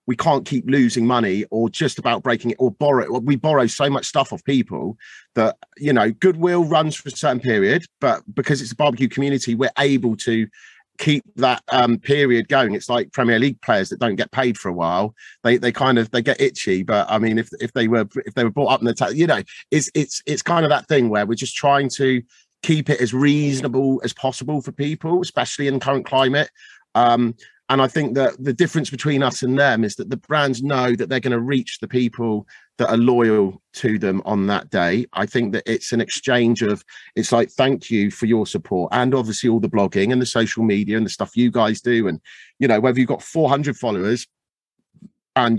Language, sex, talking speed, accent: English, male, 230 wpm, British